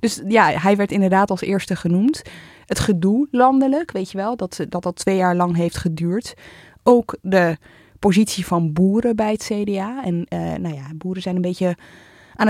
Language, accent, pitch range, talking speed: Dutch, Dutch, 170-215 Hz, 185 wpm